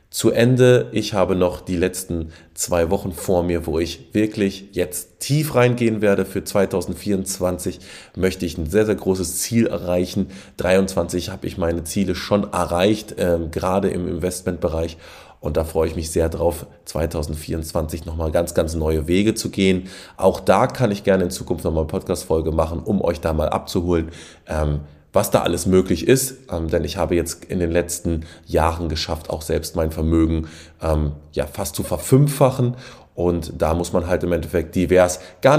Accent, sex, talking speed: German, male, 175 wpm